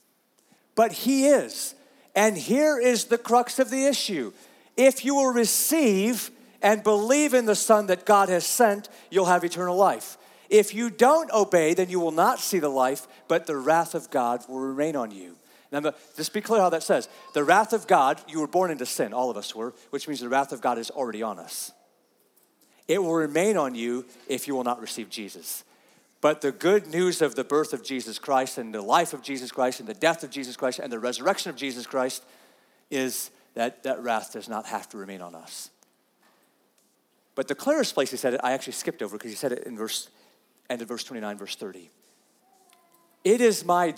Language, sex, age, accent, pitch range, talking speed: English, male, 40-59, American, 130-215 Hz, 210 wpm